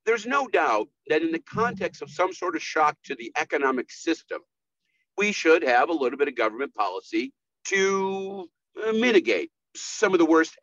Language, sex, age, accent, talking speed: English, male, 50-69, American, 175 wpm